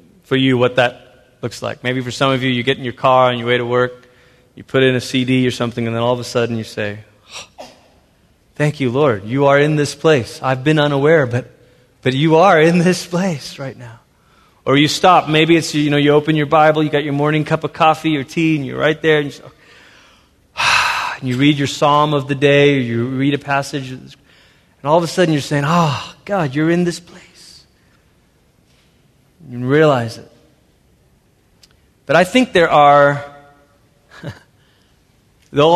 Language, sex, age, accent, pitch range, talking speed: English, male, 20-39, American, 125-155 Hz, 200 wpm